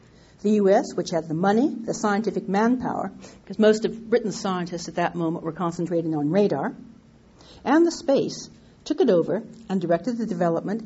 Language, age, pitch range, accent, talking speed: English, 50-69, 185-230 Hz, American, 170 wpm